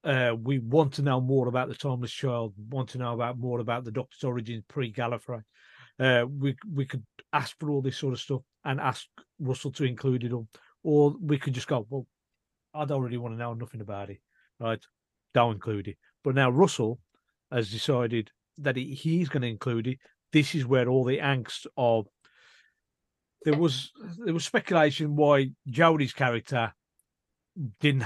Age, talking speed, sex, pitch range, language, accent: 40-59, 180 wpm, male, 110-140 Hz, English, British